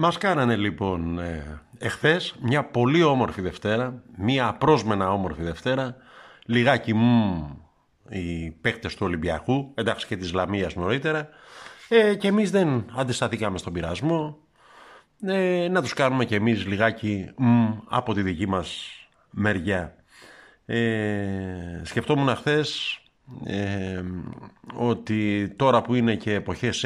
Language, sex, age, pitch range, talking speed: Greek, male, 50-69, 100-130 Hz, 120 wpm